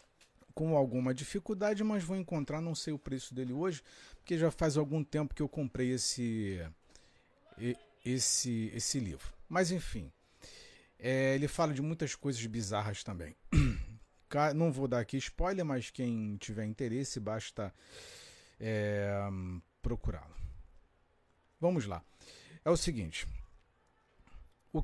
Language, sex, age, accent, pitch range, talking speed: Portuguese, male, 40-59, Brazilian, 110-165 Hz, 120 wpm